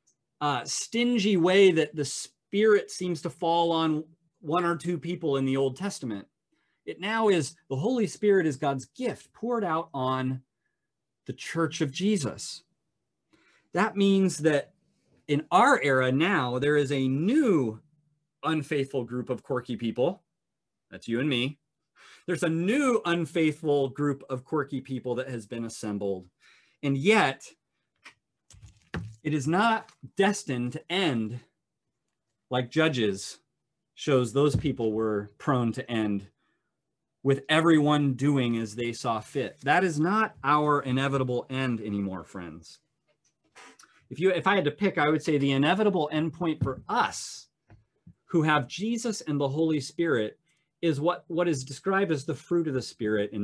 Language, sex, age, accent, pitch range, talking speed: English, male, 30-49, American, 125-170 Hz, 150 wpm